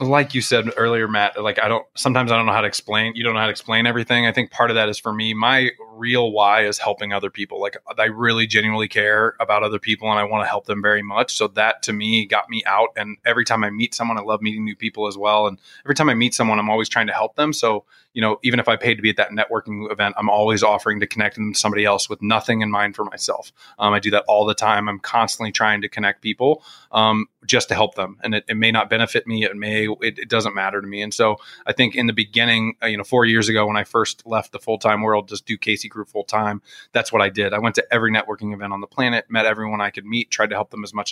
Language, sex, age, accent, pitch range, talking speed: English, male, 20-39, American, 105-115 Hz, 285 wpm